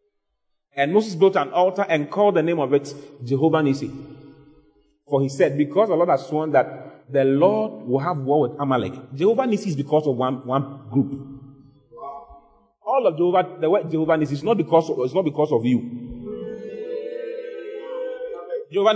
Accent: Nigerian